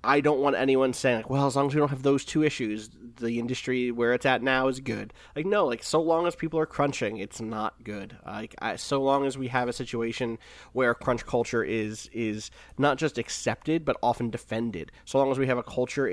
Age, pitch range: 20-39, 115-140 Hz